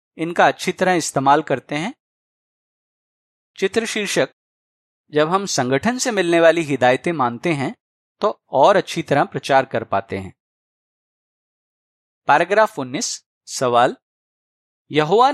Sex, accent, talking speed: male, native, 115 wpm